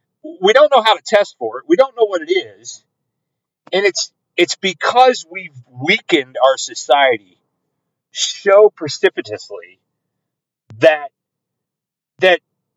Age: 40-59